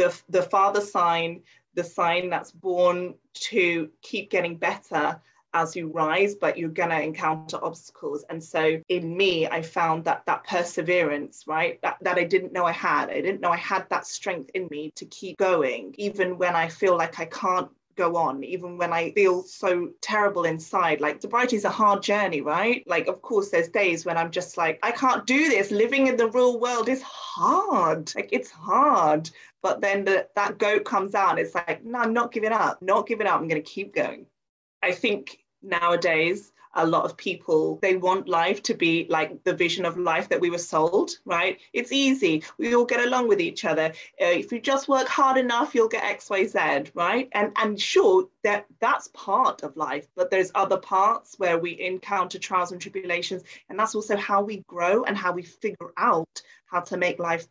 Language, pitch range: English, 165-210 Hz